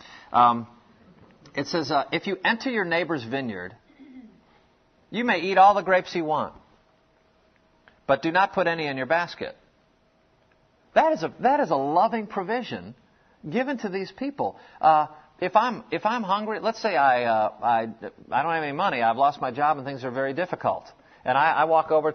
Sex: male